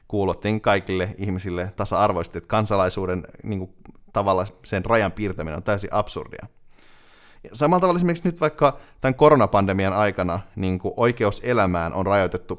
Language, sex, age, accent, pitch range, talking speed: Finnish, male, 30-49, native, 95-115 Hz, 135 wpm